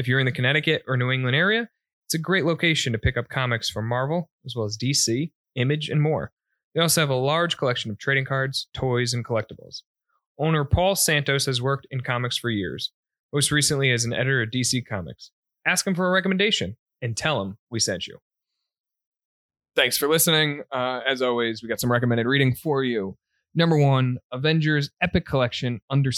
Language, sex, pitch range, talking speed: English, male, 120-150 Hz, 195 wpm